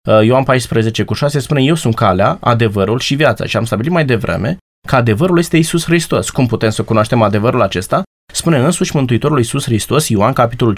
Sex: male